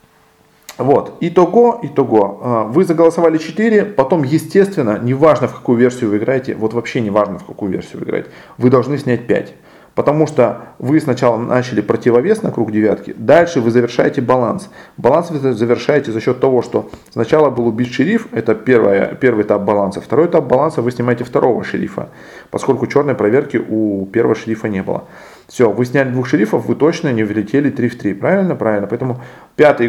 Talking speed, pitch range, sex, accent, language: 175 wpm, 110-150 Hz, male, native, Russian